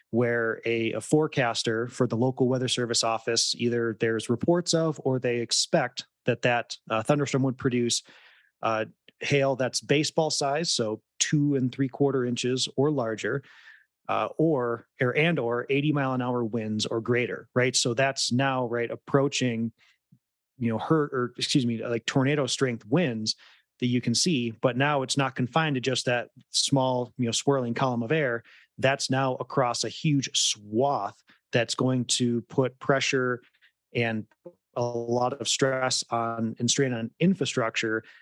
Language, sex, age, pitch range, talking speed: English, male, 30-49, 115-135 Hz, 165 wpm